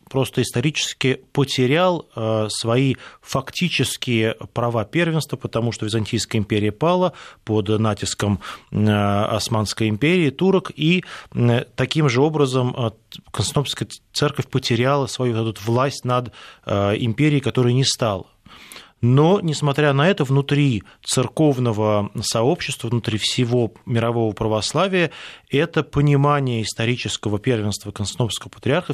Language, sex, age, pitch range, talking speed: Russian, male, 20-39, 110-140 Hz, 105 wpm